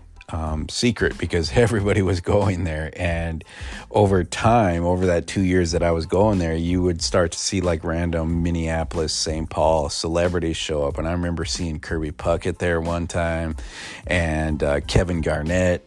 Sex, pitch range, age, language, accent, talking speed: male, 80-90 Hz, 40-59, English, American, 170 wpm